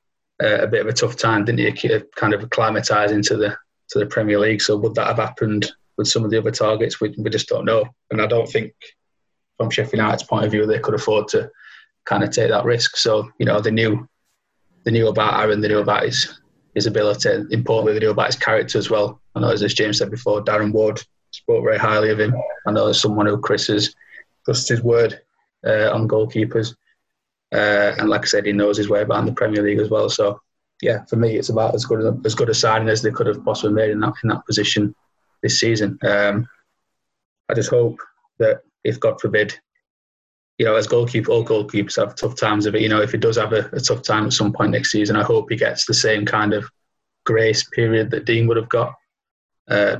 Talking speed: 230 wpm